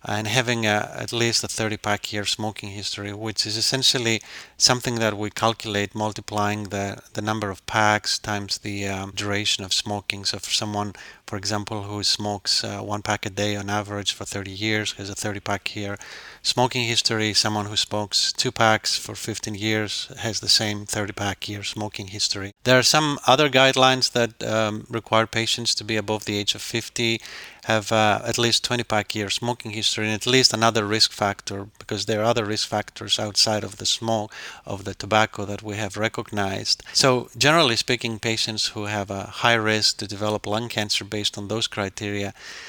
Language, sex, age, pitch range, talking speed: English, male, 30-49, 105-115 Hz, 185 wpm